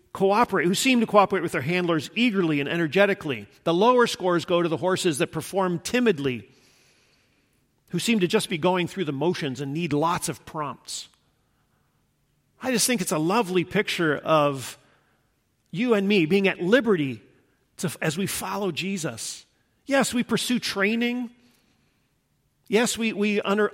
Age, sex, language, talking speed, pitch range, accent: 50-69, male, English, 155 wpm, 140-195 Hz, American